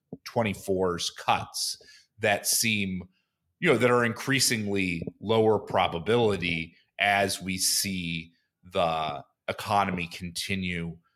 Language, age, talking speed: English, 30-49, 90 wpm